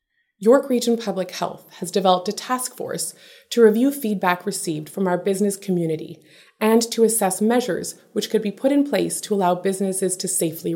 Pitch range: 175-230 Hz